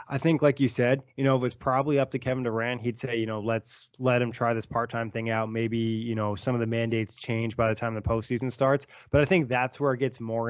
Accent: American